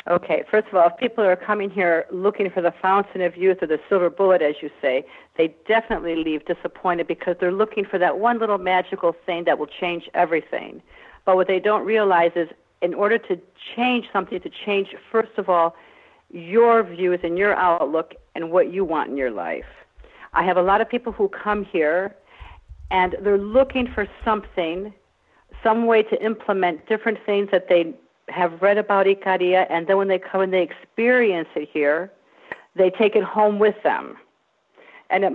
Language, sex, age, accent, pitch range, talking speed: English, female, 50-69, American, 180-215 Hz, 190 wpm